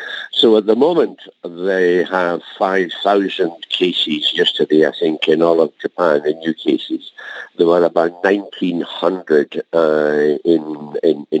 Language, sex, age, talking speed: English, male, 60-79, 115 wpm